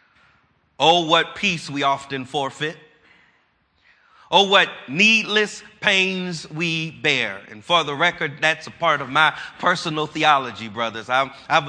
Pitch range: 145-190 Hz